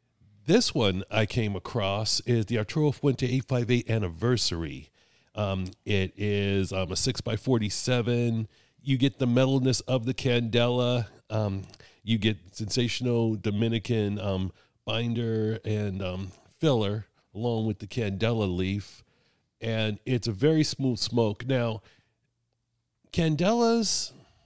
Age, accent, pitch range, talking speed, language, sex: 40-59, American, 105-125 Hz, 115 wpm, English, male